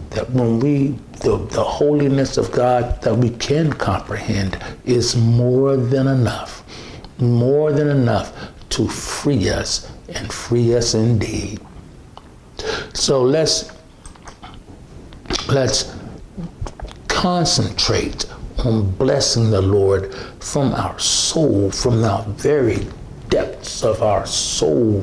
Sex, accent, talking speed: male, American, 105 wpm